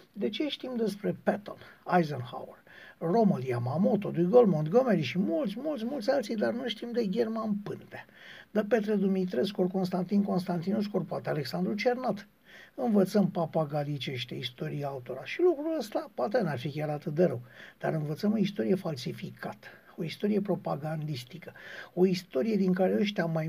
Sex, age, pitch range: male, 60-79, 160-200 Hz